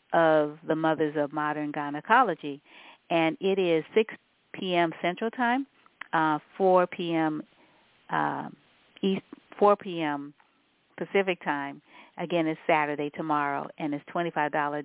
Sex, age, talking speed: female, 50-69, 135 wpm